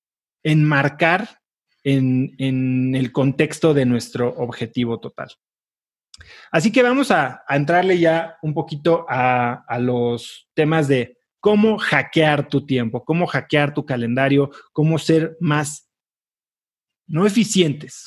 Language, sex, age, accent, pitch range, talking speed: Spanish, male, 30-49, Mexican, 135-175 Hz, 120 wpm